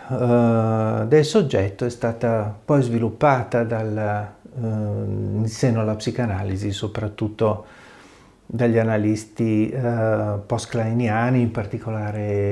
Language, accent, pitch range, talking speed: Italian, native, 105-125 Hz, 85 wpm